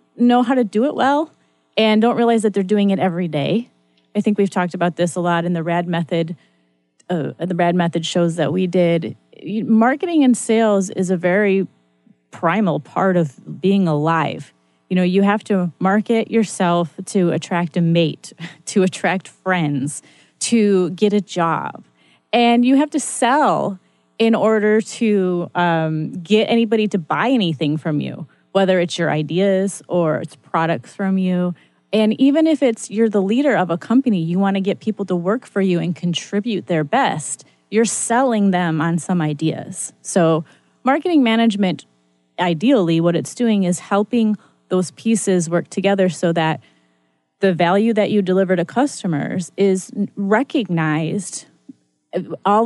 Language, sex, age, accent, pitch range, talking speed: English, female, 30-49, American, 165-215 Hz, 165 wpm